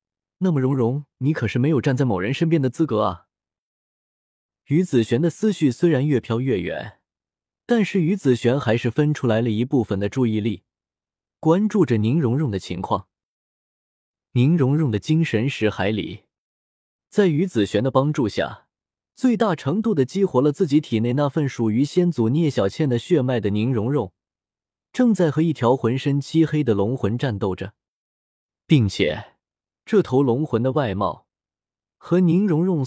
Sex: male